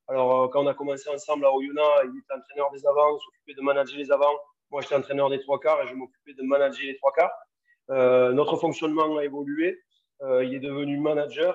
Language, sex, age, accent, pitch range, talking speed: French, male, 30-49, French, 135-180 Hz, 225 wpm